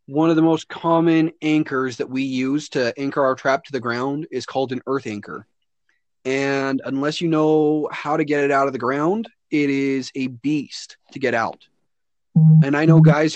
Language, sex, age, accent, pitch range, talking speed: English, male, 30-49, American, 130-160 Hz, 200 wpm